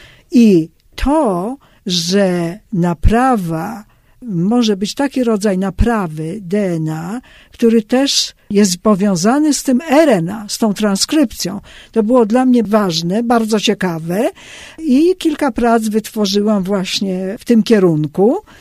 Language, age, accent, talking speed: Polish, 50-69, native, 115 wpm